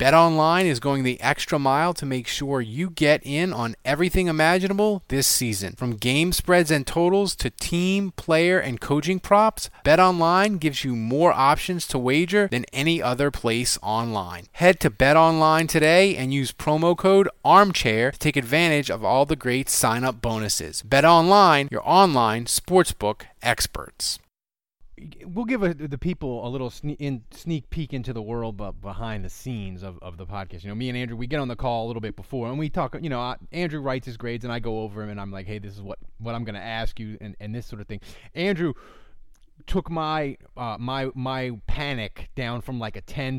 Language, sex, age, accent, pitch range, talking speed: English, male, 30-49, American, 115-160 Hz, 200 wpm